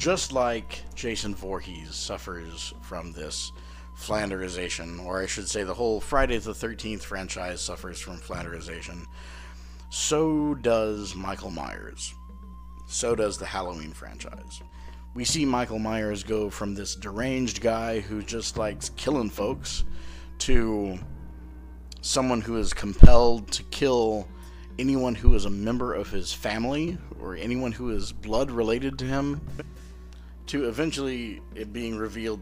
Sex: male